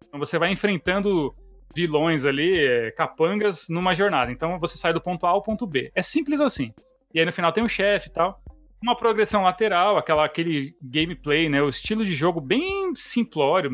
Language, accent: Portuguese, Brazilian